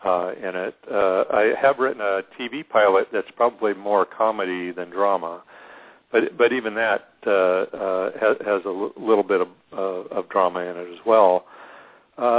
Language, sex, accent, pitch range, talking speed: English, male, American, 95-105 Hz, 180 wpm